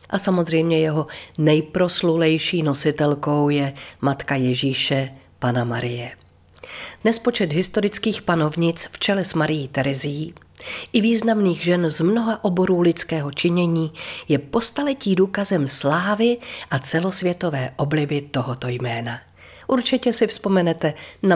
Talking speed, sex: 110 wpm, female